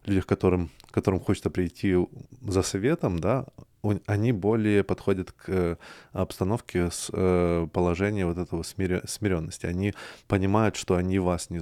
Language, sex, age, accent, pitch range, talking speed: Russian, male, 20-39, native, 90-100 Hz, 120 wpm